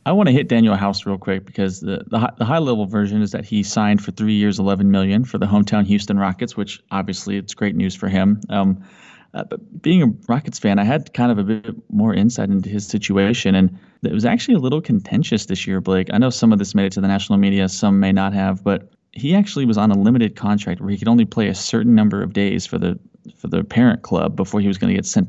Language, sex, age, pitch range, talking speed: English, male, 20-39, 100-115 Hz, 260 wpm